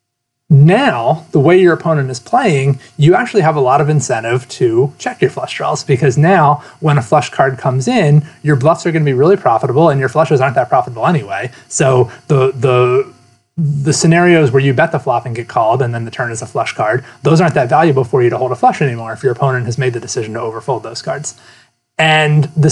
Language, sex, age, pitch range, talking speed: English, male, 30-49, 125-155 Hz, 230 wpm